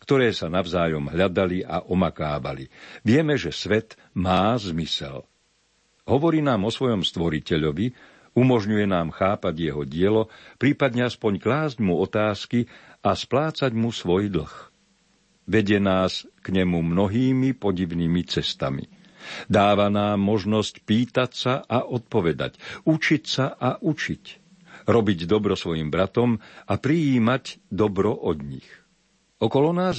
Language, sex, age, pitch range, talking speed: Slovak, male, 50-69, 90-125 Hz, 120 wpm